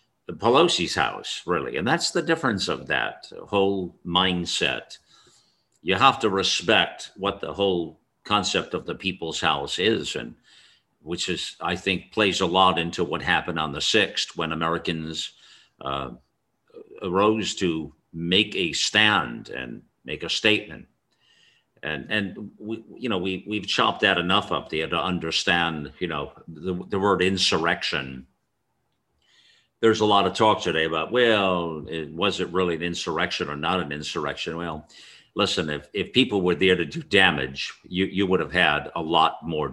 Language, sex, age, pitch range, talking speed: English, male, 50-69, 80-100 Hz, 160 wpm